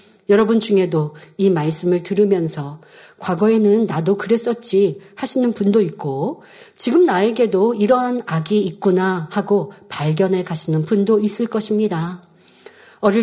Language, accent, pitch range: Korean, native, 185-240 Hz